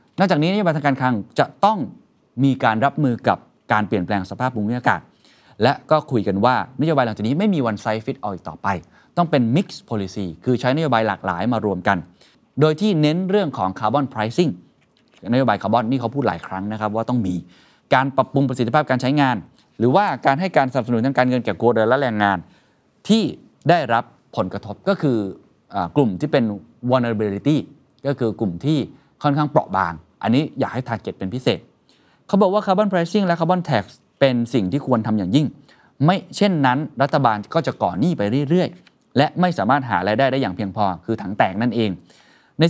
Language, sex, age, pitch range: Thai, male, 20-39, 105-145 Hz